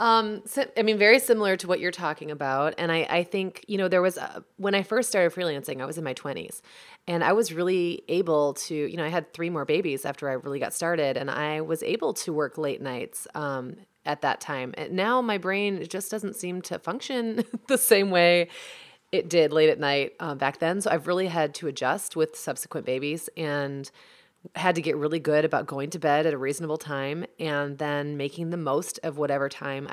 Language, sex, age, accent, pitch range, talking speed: English, female, 30-49, American, 150-195 Hz, 220 wpm